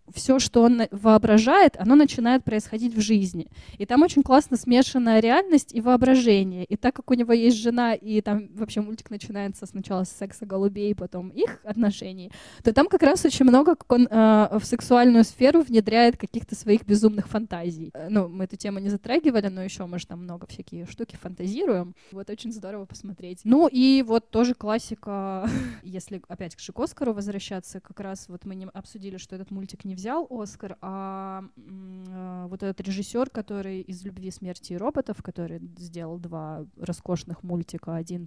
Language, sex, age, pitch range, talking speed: Russian, female, 20-39, 190-235 Hz, 175 wpm